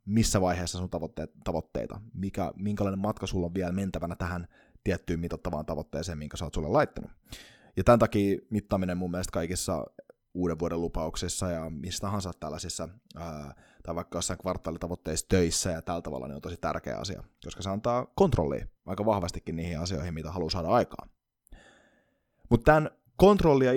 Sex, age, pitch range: male, 20-39, 85-110 Hz